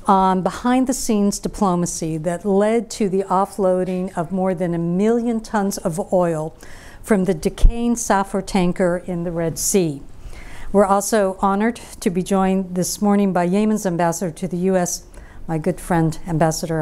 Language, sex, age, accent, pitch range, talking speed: English, female, 50-69, American, 170-210 Hz, 155 wpm